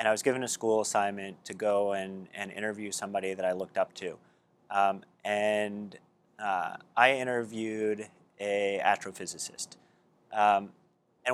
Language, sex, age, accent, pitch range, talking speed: English, male, 30-49, American, 100-115 Hz, 145 wpm